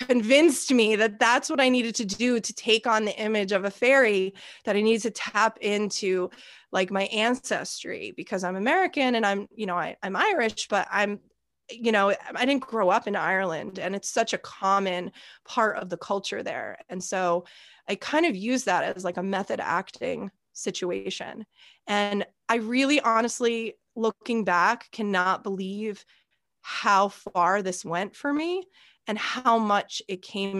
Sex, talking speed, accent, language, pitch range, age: female, 170 wpm, American, English, 185-230 Hz, 20-39